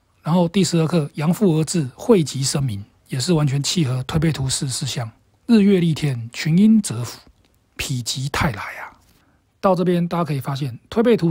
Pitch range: 125-175 Hz